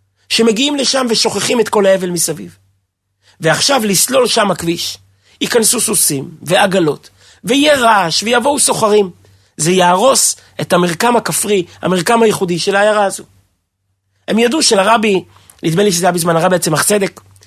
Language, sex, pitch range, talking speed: Hebrew, male, 140-225 Hz, 135 wpm